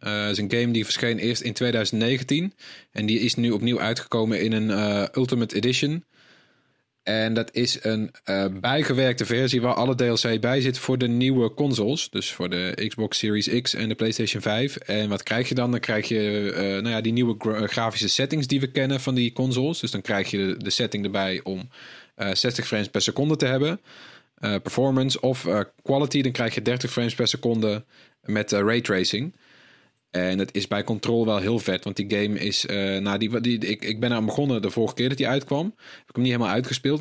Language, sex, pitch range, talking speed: Dutch, male, 105-125 Hz, 210 wpm